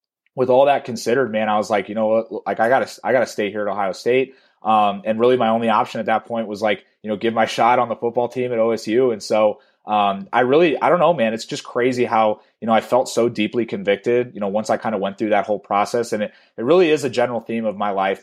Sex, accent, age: male, American, 30-49